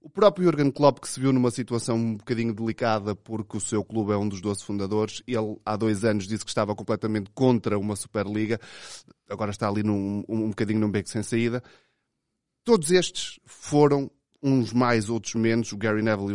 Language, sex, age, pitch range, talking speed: Portuguese, male, 20-39, 105-135 Hz, 195 wpm